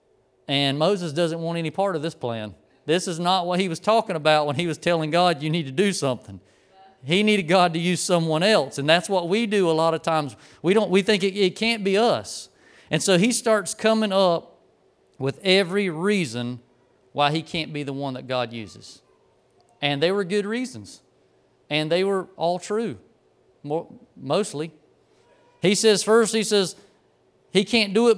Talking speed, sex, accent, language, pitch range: 195 wpm, male, American, English, 160-210 Hz